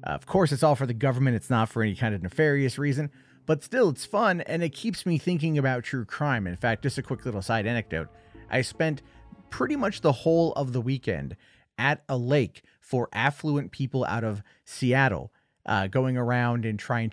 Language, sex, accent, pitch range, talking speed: English, male, American, 110-155 Hz, 205 wpm